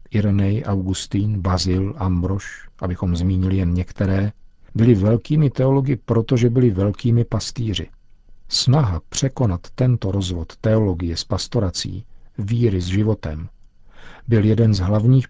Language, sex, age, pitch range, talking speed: Czech, male, 50-69, 95-115 Hz, 115 wpm